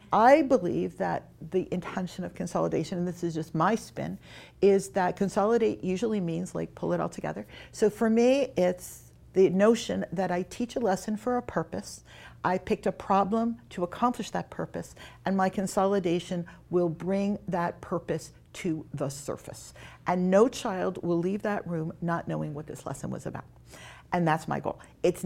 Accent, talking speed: American, 175 wpm